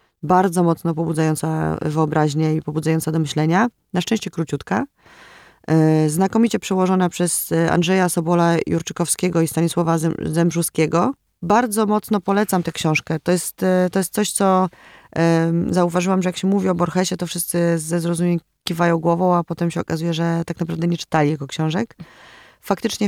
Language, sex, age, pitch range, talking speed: Polish, female, 20-39, 165-185 Hz, 140 wpm